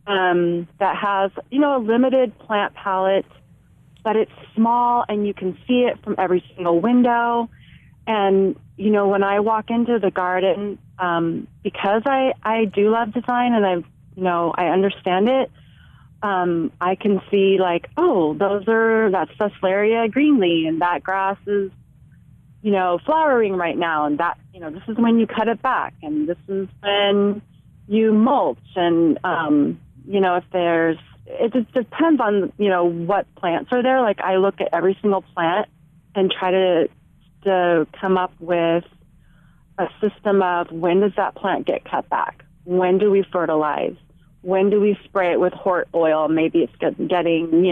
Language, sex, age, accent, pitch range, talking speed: English, female, 30-49, American, 170-205 Hz, 170 wpm